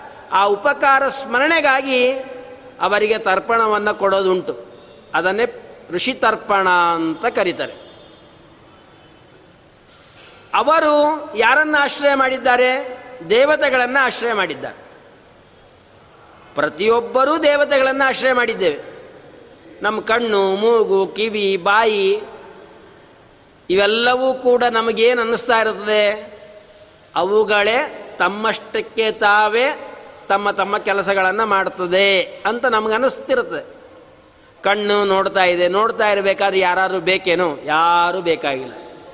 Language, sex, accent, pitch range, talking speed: Kannada, male, native, 200-260 Hz, 75 wpm